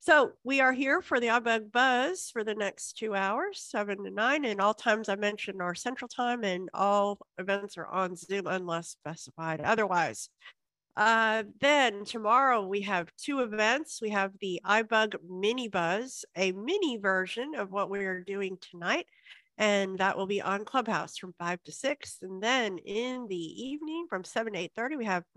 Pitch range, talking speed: 195-255 Hz, 180 wpm